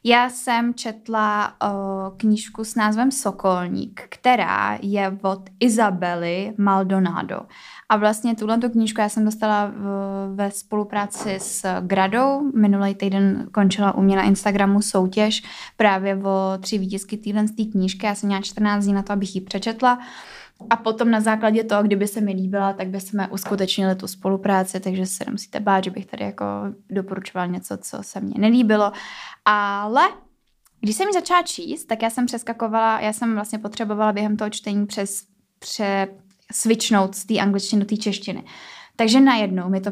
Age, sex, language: 10-29, female, Czech